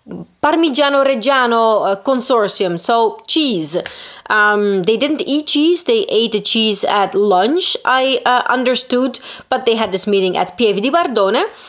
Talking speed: 145 wpm